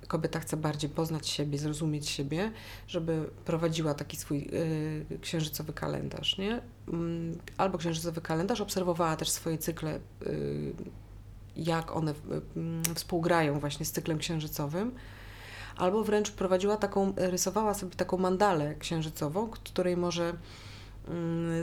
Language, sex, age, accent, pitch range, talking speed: Polish, female, 30-49, native, 150-185 Hz, 120 wpm